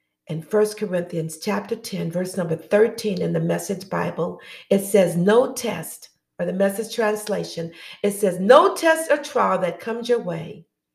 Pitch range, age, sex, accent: 175-230 Hz, 50-69, female, American